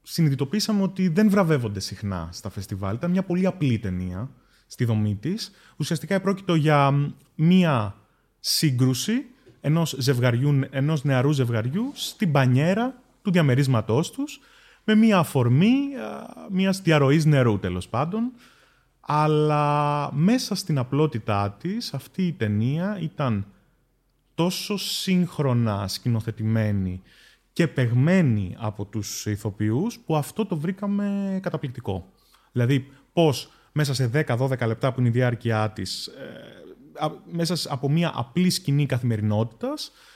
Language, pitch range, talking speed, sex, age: Greek, 115-180 Hz, 115 wpm, male, 30-49